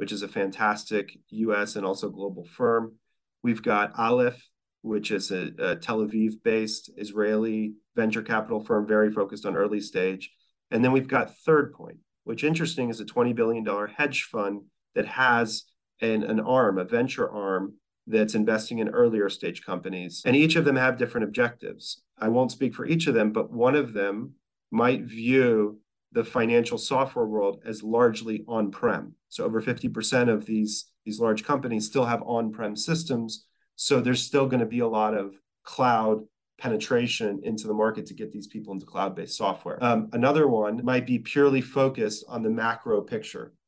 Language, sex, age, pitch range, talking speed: English, male, 40-59, 105-125 Hz, 170 wpm